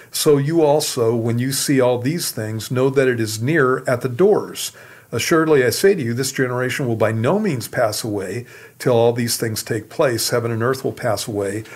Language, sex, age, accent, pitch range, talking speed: English, male, 50-69, American, 115-140 Hz, 215 wpm